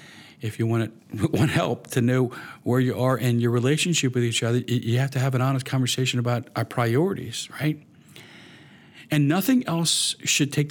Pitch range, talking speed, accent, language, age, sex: 115-145 Hz, 185 wpm, American, English, 50-69, male